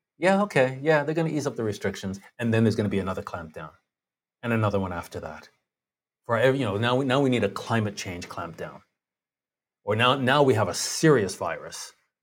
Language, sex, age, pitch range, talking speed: English, male, 30-49, 100-125 Hz, 215 wpm